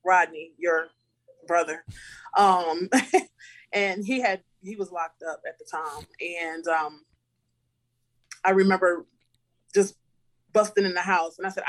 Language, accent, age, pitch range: English, American, 20-39, 165-200 Hz